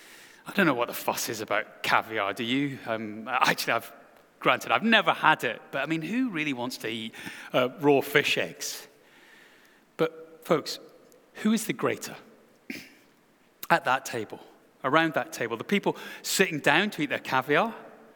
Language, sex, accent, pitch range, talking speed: English, male, British, 160-250 Hz, 165 wpm